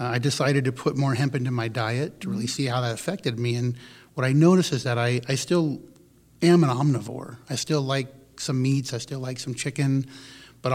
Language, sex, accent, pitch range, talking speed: English, male, American, 125-145 Hz, 220 wpm